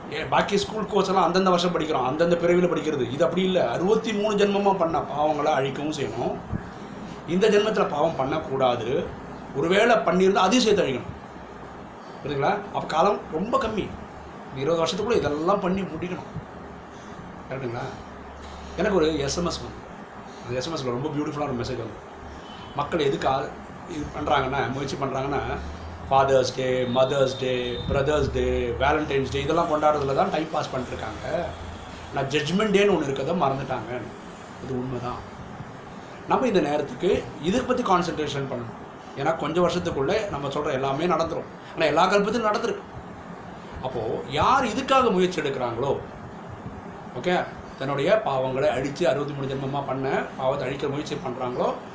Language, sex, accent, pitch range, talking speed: Tamil, male, native, 130-180 Hz, 130 wpm